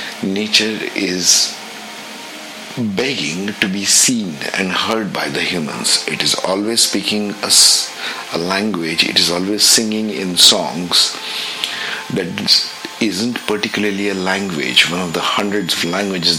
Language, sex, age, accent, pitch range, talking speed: English, male, 50-69, Indian, 90-105 Hz, 130 wpm